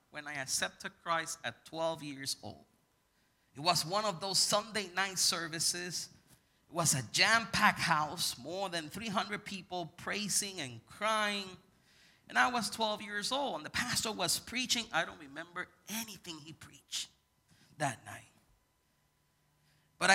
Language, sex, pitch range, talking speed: English, male, 155-205 Hz, 145 wpm